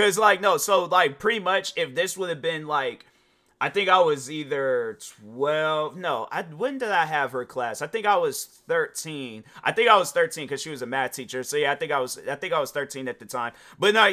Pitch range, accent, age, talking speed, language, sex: 130-210 Hz, American, 30-49, 255 wpm, English, male